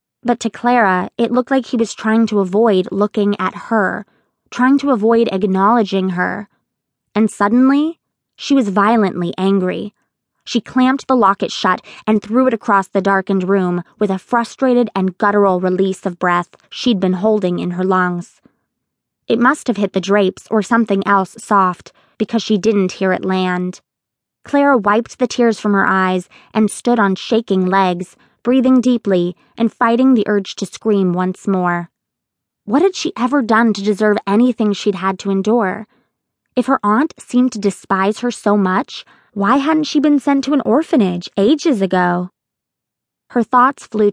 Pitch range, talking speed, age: 190-235 Hz, 165 wpm, 20-39